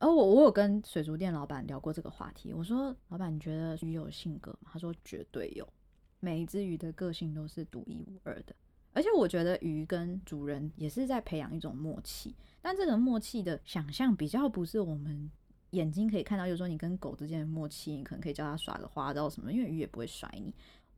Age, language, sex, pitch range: 20-39, Chinese, female, 155-205 Hz